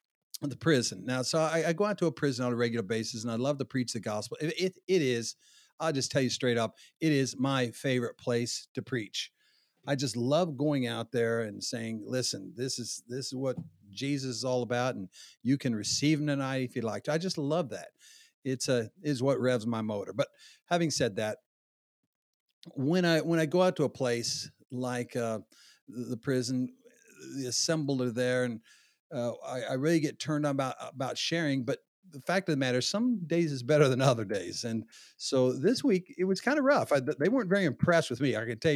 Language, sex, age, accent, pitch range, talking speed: English, male, 50-69, American, 120-150 Hz, 220 wpm